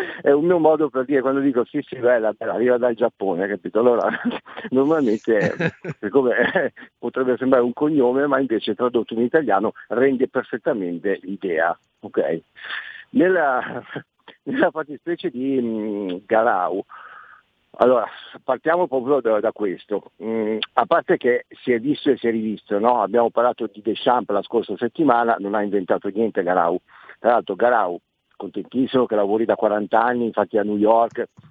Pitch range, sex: 110-145 Hz, male